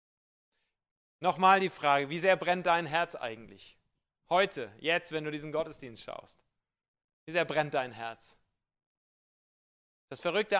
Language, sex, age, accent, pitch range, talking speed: German, male, 30-49, German, 125-165 Hz, 130 wpm